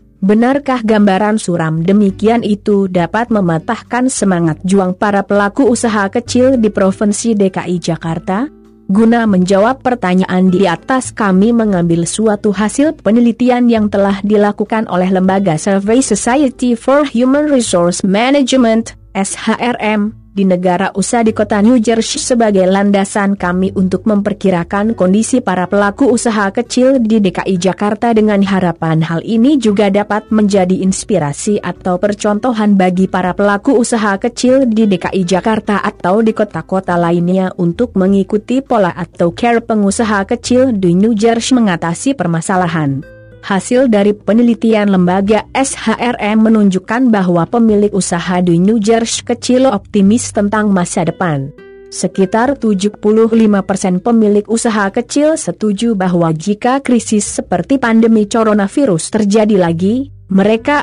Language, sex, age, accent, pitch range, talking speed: Indonesian, female, 30-49, native, 185-235 Hz, 125 wpm